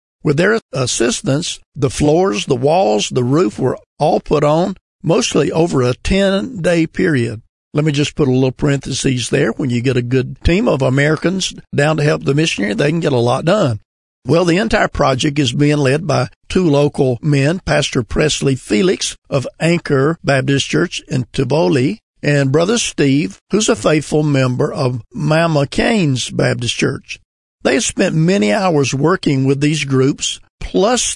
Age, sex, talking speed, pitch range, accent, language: 50-69, male, 170 wpm, 135-165 Hz, American, English